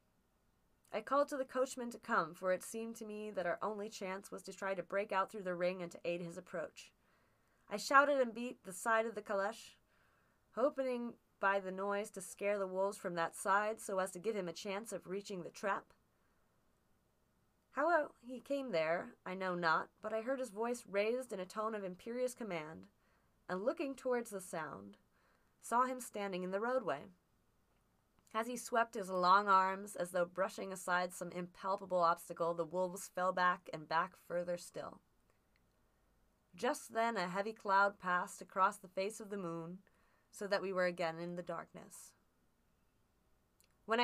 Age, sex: 20-39, female